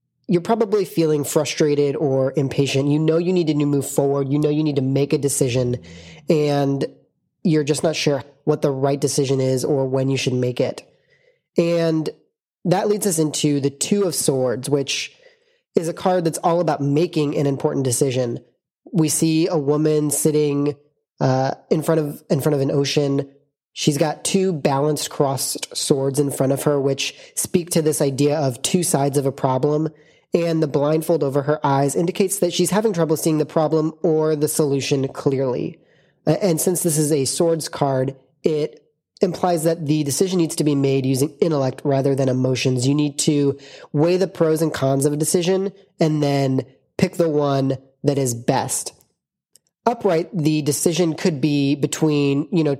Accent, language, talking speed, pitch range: American, English, 180 wpm, 140-165 Hz